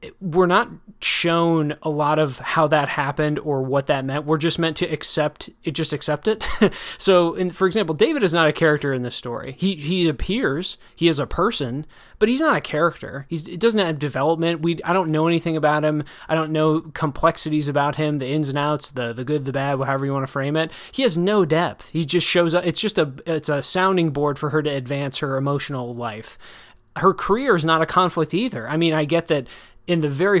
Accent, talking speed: American, 225 wpm